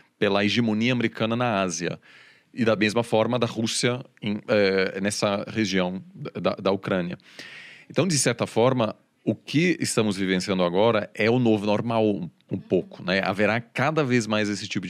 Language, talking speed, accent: Portuguese, 160 wpm, Brazilian